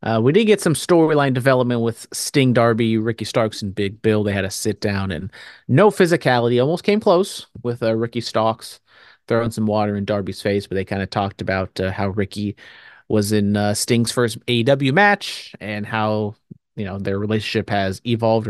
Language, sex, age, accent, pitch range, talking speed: English, male, 30-49, American, 100-125 Hz, 195 wpm